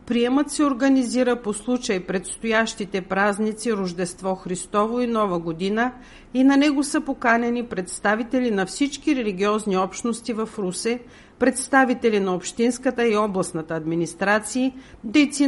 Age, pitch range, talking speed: 50-69, 195-255 Hz, 120 wpm